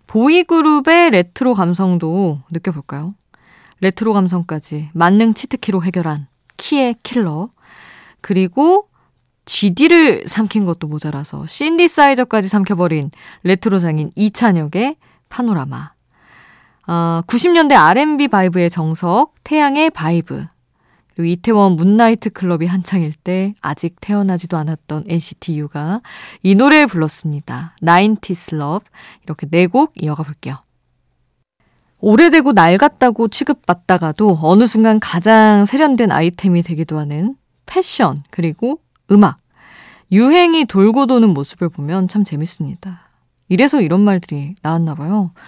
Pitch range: 165-235 Hz